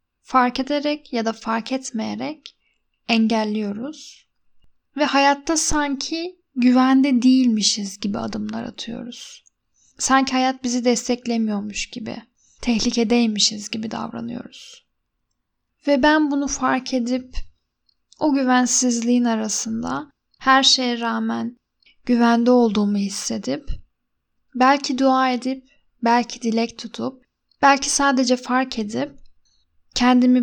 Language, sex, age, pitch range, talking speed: Turkish, female, 10-29, 230-265 Hz, 95 wpm